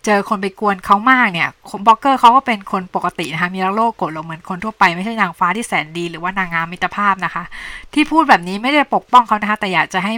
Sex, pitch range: female, 185-225 Hz